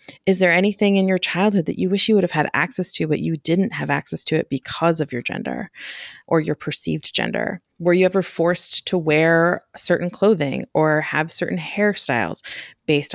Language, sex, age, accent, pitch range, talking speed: English, female, 30-49, American, 150-185 Hz, 195 wpm